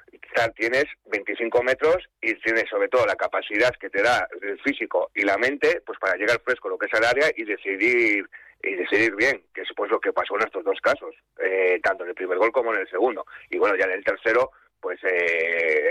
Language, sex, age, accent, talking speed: Spanish, male, 30-49, Spanish, 225 wpm